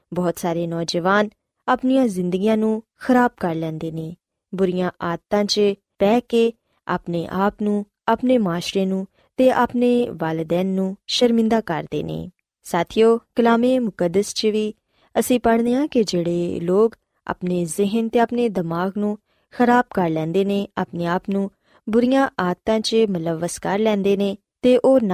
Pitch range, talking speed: 180-235 Hz, 90 wpm